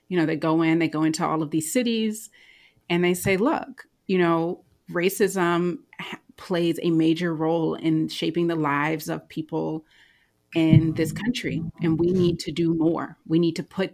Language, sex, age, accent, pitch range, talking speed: English, female, 30-49, American, 160-195 Hz, 180 wpm